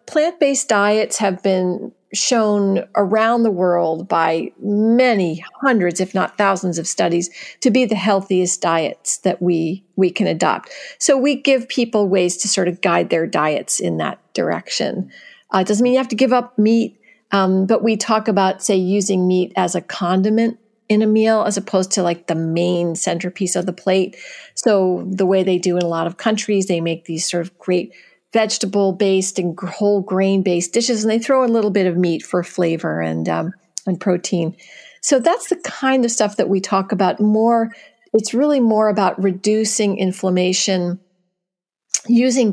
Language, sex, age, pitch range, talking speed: English, female, 50-69, 180-220 Hz, 180 wpm